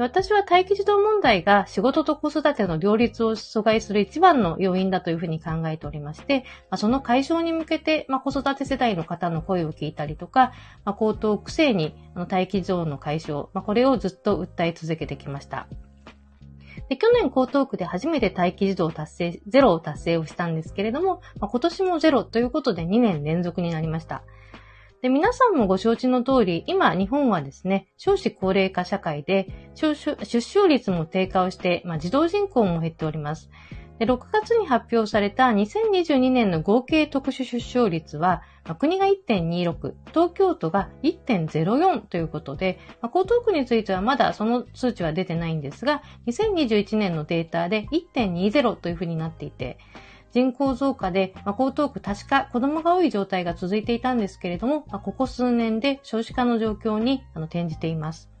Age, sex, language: 40-59, female, Japanese